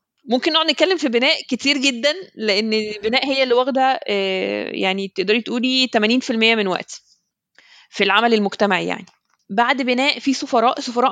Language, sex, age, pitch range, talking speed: Arabic, female, 20-39, 200-255 Hz, 145 wpm